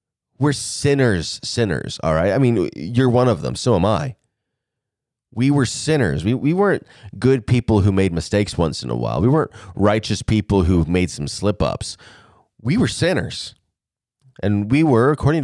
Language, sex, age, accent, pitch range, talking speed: English, male, 30-49, American, 105-165 Hz, 170 wpm